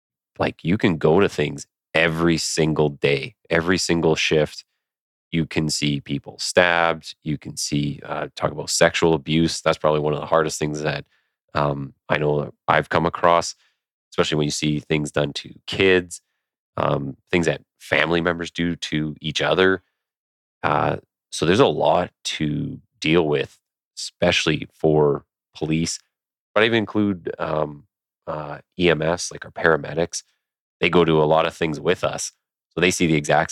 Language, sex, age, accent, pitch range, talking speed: English, male, 30-49, American, 75-85 Hz, 165 wpm